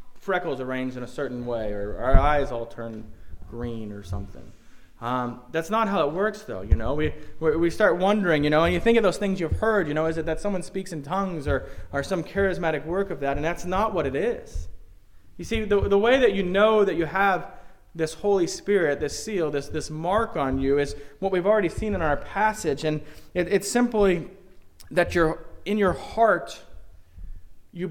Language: English